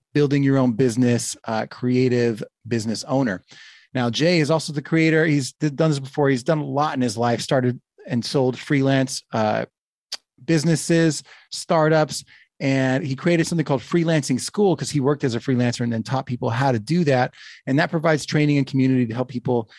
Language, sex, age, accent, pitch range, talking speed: English, male, 30-49, American, 130-155 Hz, 190 wpm